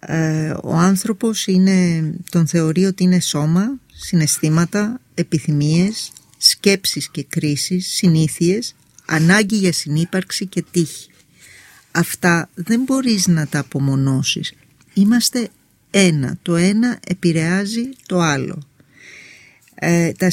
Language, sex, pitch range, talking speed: Greek, female, 160-205 Hz, 95 wpm